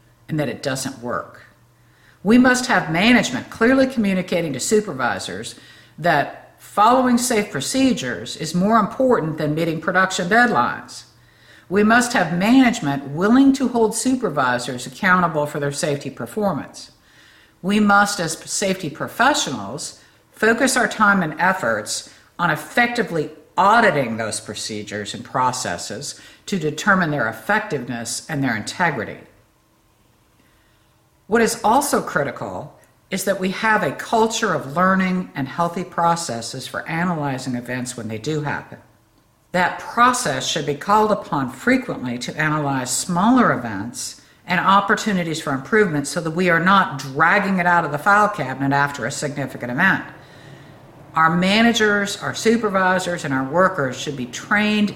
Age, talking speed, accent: 60-79, 135 wpm, American